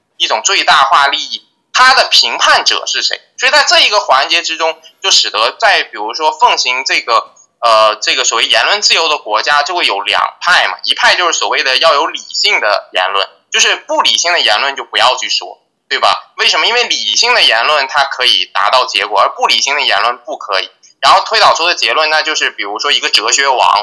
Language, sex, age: Chinese, male, 20-39